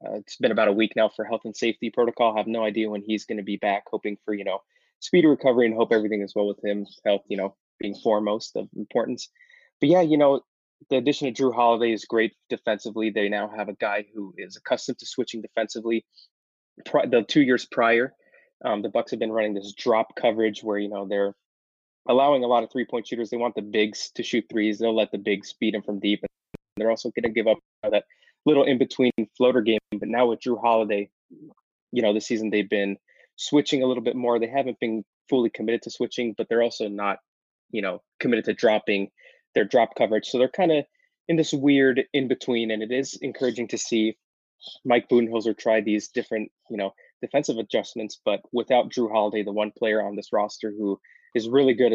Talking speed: 215 wpm